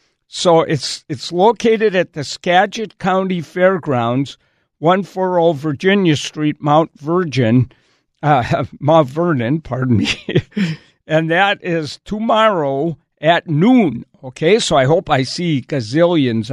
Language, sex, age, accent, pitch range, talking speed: English, male, 60-79, American, 135-180 Hz, 120 wpm